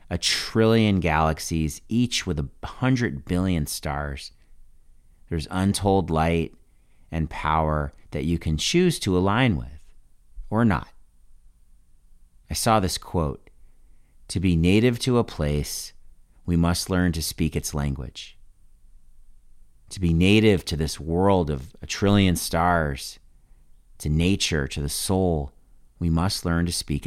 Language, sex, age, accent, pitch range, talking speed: English, male, 40-59, American, 75-95 Hz, 135 wpm